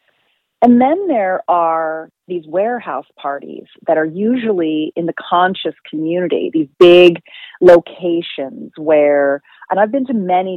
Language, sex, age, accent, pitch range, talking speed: English, female, 40-59, American, 150-215 Hz, 130 wpm